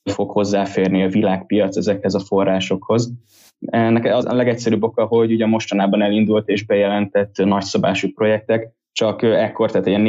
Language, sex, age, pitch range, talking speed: Hungarian, male, 10-29, 100-115 Hz, 135 wpm